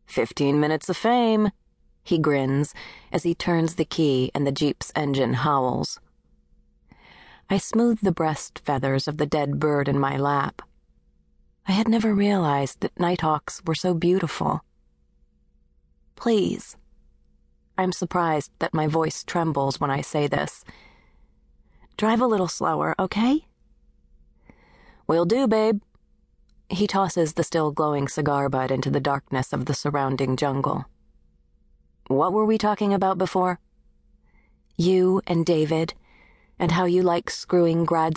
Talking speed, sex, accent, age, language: 130 wpm, female, American, 30-49, English